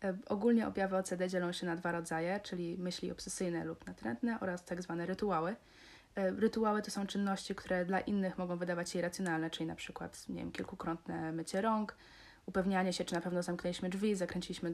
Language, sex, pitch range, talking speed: Polish, female, 175-195 Hz, 175 wpm